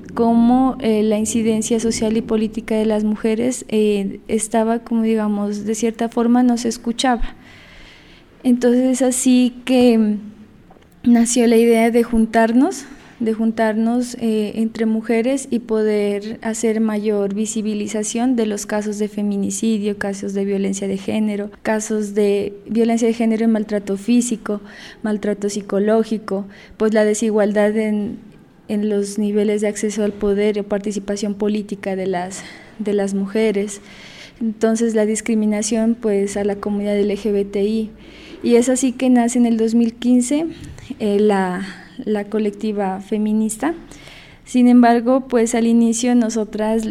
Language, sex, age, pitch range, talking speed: Spanish, female, 20-39, 210-230 Hz, 135 wpm